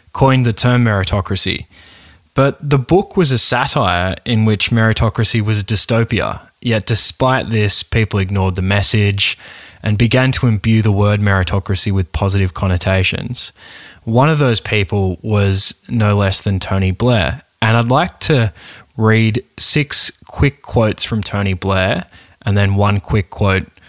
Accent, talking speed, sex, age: Australian, 150 wpm, male, 20-39